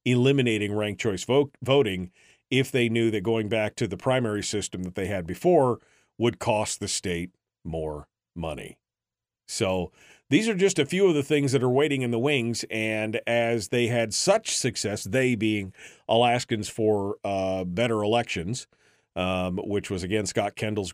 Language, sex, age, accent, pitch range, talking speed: English, male, 40-59, American, 100-125 Hz, 170 wpm